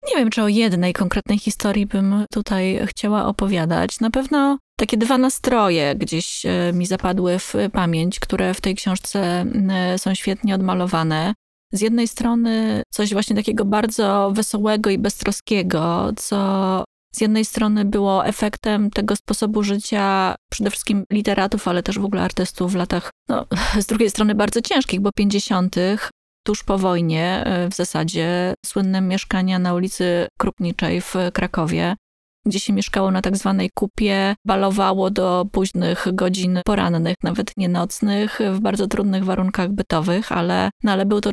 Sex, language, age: female, Polish, 20-39